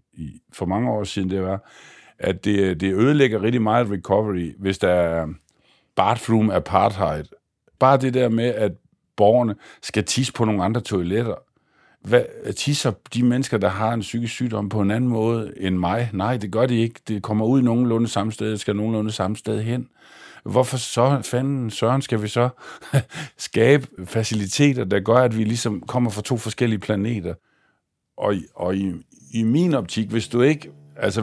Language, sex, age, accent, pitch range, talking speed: Danish, male, 50-69, native, 95-120 Hz, 175 wpm